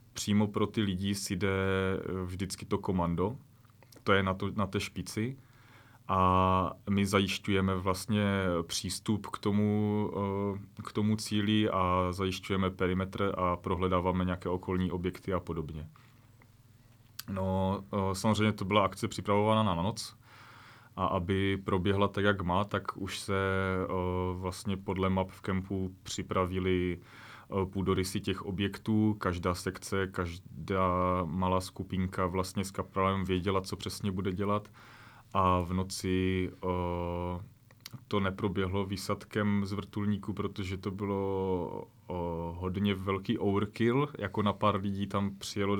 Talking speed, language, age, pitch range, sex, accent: 125 wpm, Czech, 30-49, 95-105 Hz, male, native